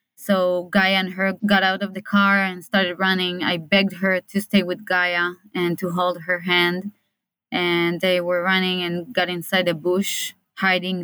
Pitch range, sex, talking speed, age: 180-200 Hz, female, 185 wpm, 20-39